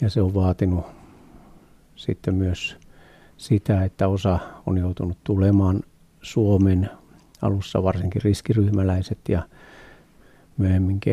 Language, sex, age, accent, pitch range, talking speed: Finnish, male, 60-79, native, 95-110 Hz, 95 wpm